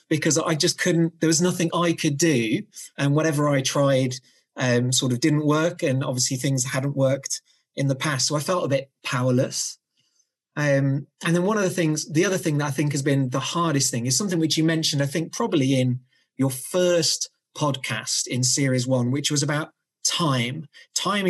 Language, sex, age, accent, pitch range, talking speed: English, male, 30-49, British, 130-160 Hz, 200 wpm